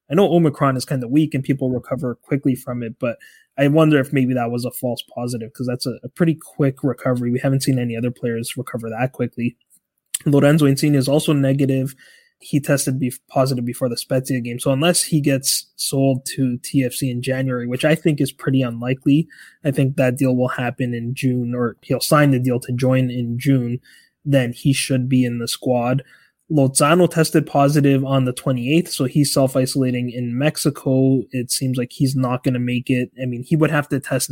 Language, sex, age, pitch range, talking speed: English, male, 20-39, 125-140 Hz, 205 wpm